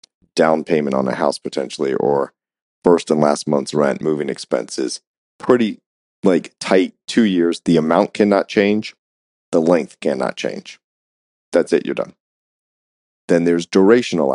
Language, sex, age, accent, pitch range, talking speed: English, male, 40-59, American, 75-90 Hz, 140 wpm